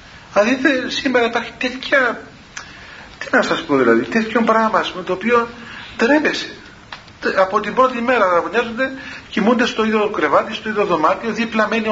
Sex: male